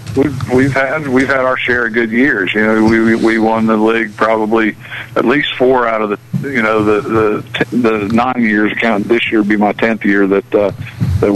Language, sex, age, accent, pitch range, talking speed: English, male, 50-69, American, 95-110 Hz, 225 wpm